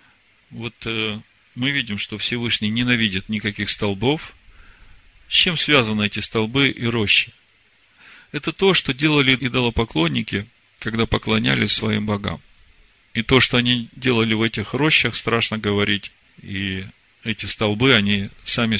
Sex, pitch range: male, 100-125 Hz